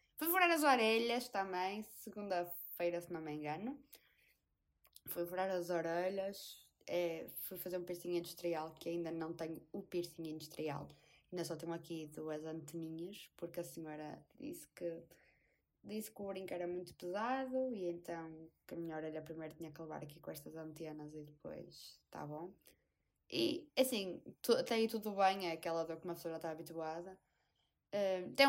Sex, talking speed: female, 170 wpm